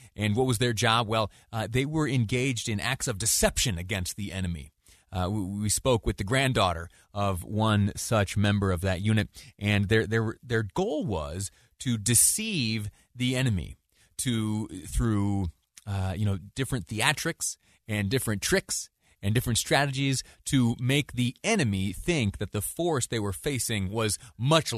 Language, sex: English, male